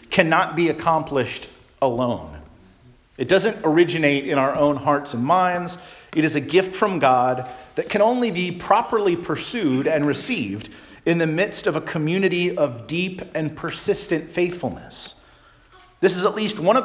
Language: English